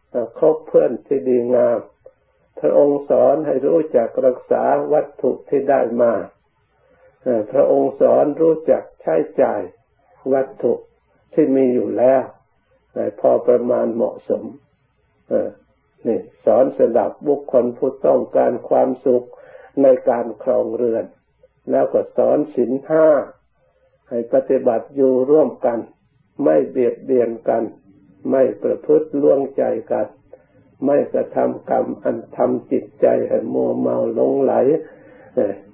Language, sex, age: Thai, male, 60-79